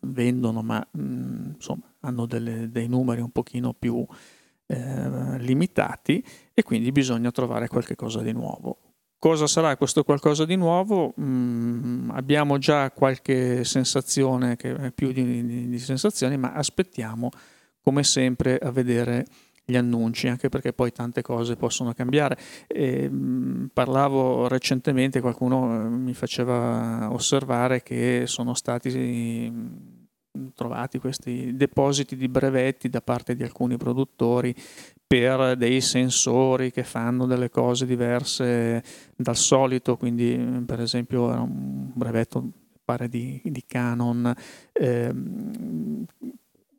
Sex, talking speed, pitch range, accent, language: male, 120 wpm, 120-135 Hz, native, Italian